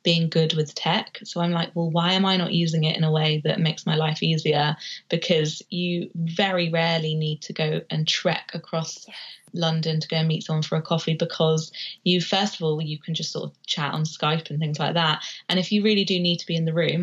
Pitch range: 155-180 Hz